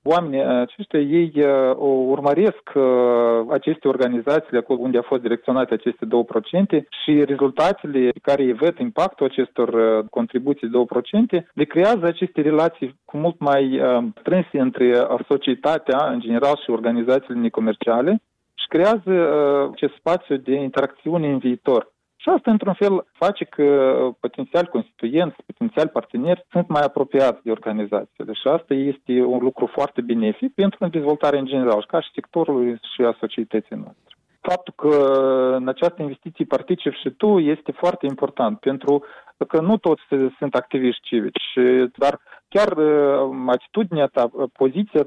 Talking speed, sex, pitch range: 150 wpm, male, 130-170 Hz